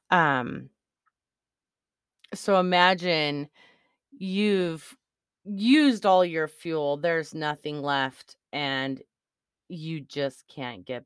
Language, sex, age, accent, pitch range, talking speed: English, female, 30-49, American, 140-185 Hz, 85 wpm